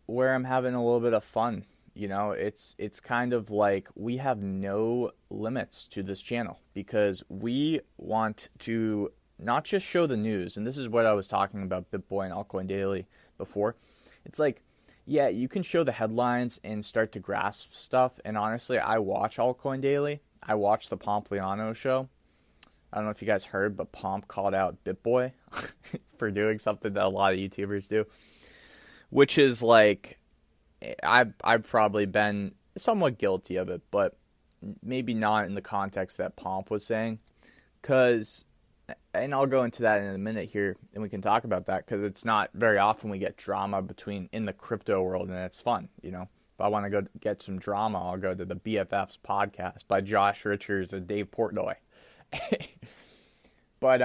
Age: 20-39